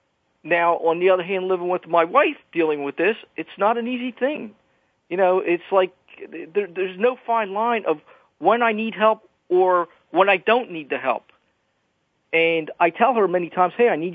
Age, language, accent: 50-69, English, American